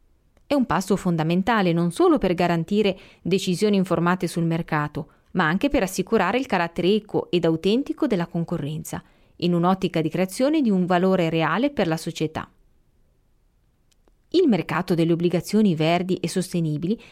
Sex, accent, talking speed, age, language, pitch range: female, native, 145 wpm, 30-49, Italian, 165-215 Hz